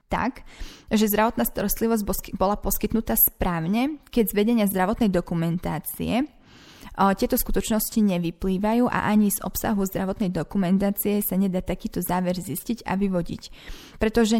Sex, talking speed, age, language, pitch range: female, 125 wpm, 20-39, Slovak, 185-220 Hz